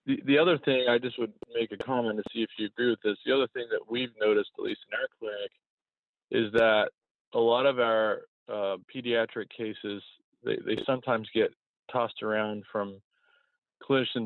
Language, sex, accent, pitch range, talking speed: English, male, American, 100-125 Hz, 190 wpm